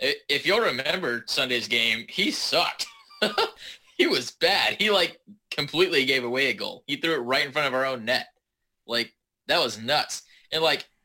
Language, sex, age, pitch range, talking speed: English, male, 20-39, 125-165 Hz, 180 wpm